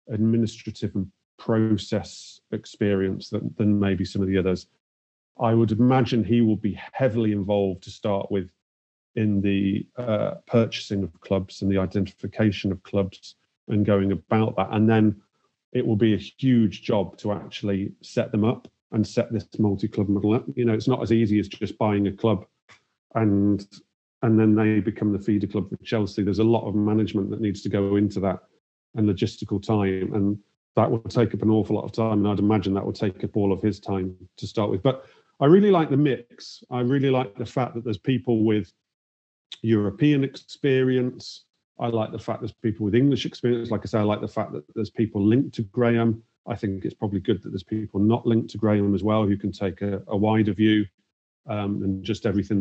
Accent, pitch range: British, 100-115 Hz